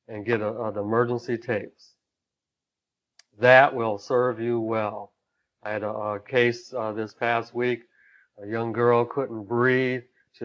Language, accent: English, American